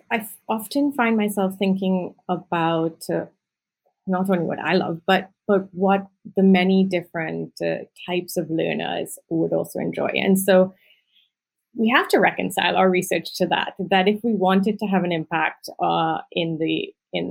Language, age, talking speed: English, 30-49, 165 wpm